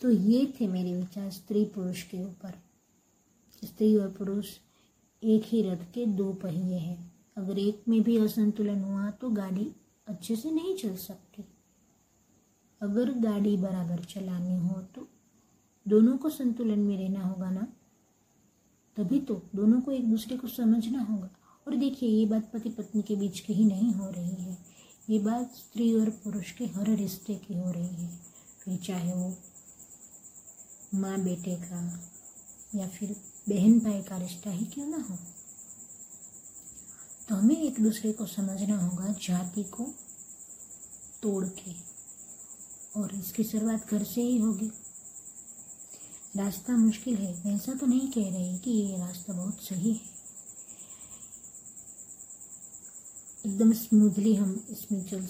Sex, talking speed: female, 145 wpm